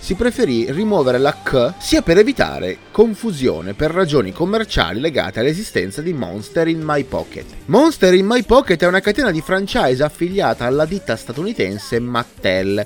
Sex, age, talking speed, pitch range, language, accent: male, 30-49, 155 wpm, 130-210 Hz, Italian, native